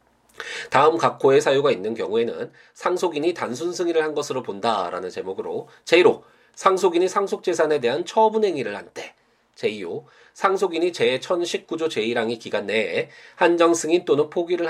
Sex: male